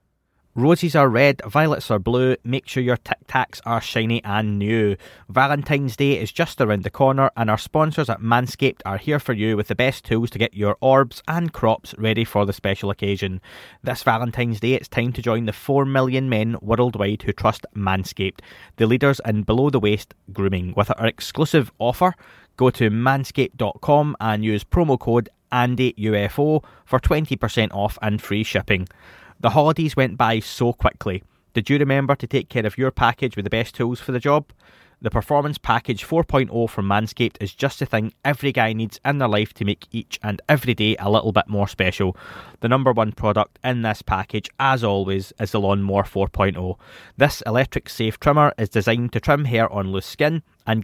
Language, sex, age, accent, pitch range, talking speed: English, male, 20-39, British, 105-135 Hz, 185 wpm